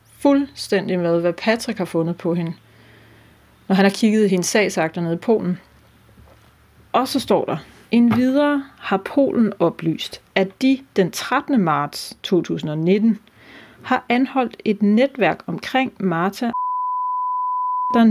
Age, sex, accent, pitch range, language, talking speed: 30-49, female, native, 175-240 Hz, Danish, 135 wpm